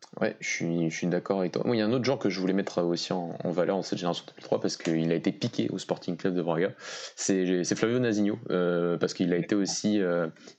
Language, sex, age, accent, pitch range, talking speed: French, male, 20-39, French, 85-100 Hz, 280 wpm